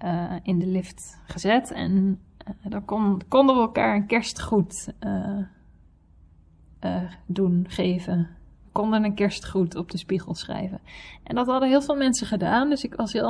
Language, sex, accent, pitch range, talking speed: Dutch, female, Dutch, 200-260 Hz, 165 wpm